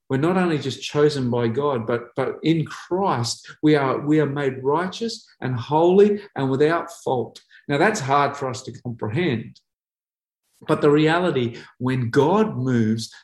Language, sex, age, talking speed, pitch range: English, male, 40-59, 160 wpm, 125-185 Hz